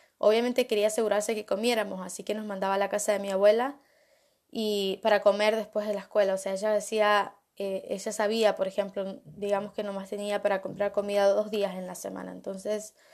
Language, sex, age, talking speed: English, female, 10-29, 200 wpm